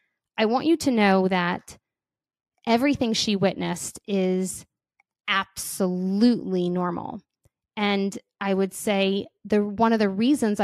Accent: American